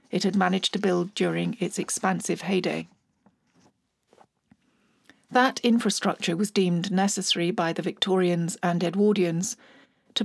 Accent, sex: British, female